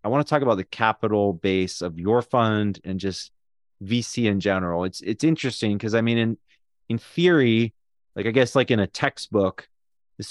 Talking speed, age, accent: 200 wpm, 30-49, American